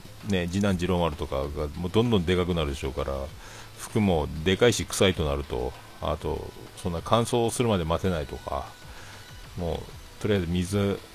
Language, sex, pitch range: Japanese, male, 80-110 Hz